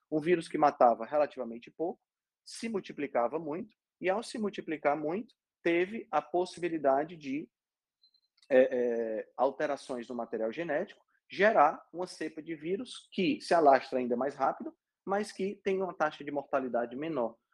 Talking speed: 145 wpm